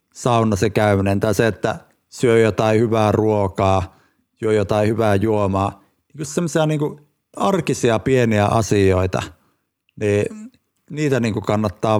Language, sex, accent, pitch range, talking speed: Finnish, male, native, 105-130 Hz, 120 wpm